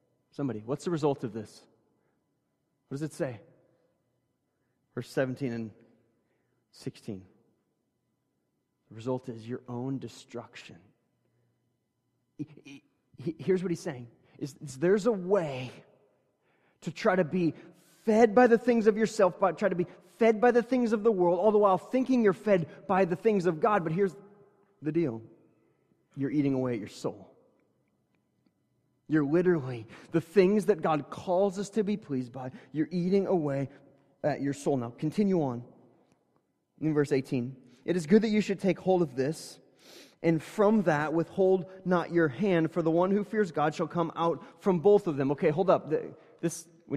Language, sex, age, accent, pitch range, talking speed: English, male, 30-49, American, 135-195 Hz, 160 wpm